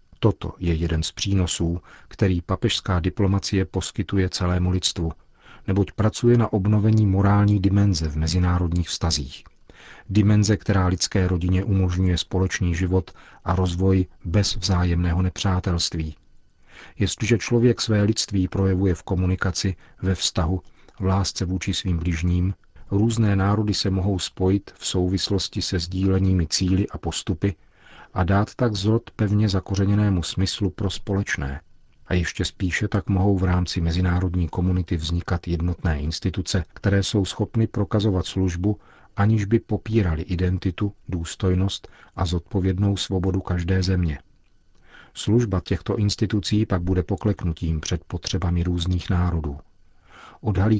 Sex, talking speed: male, 125 wpm